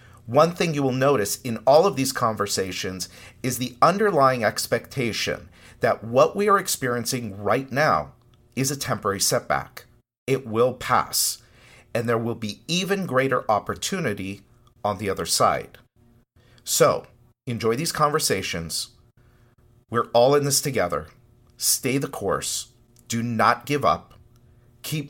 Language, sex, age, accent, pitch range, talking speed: English, male, 50-69, American, 95-120 Hz, 135 wpm